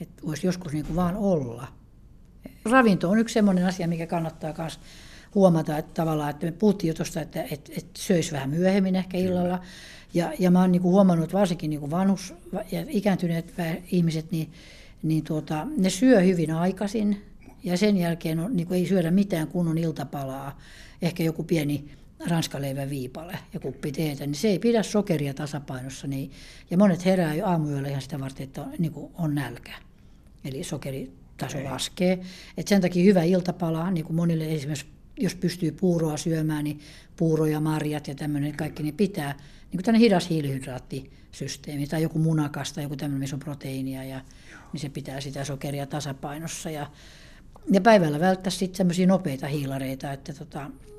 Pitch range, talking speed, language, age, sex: 145-180 Hz, 160 wpm, Finnish, 60-79, female